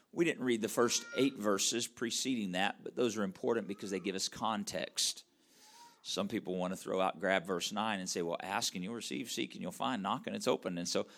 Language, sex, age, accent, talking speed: English, male, 50-69, American, 235 wpm